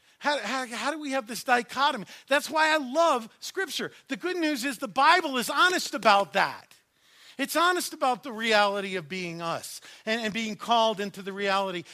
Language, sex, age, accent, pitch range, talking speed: English, male, 50-69, American, 210-315 Hz, 190 wpm